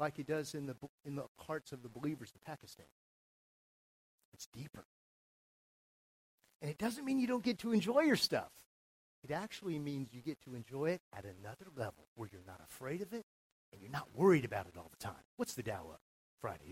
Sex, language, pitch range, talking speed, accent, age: male, English, 130-200 Hz, 205 wpm, American, 50-69